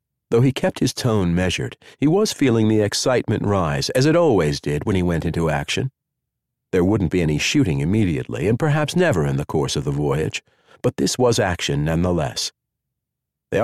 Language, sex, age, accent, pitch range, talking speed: English, male, 50-69, American, 90-135 Hz, 185 wpm